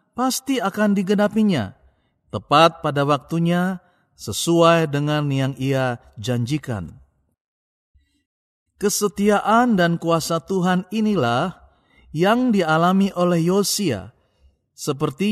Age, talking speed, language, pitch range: 40-59, 80 wpm, Indonesian, 145-200 Hz